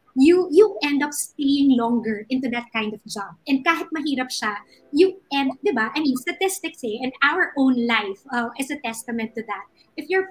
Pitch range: 230-320 Hz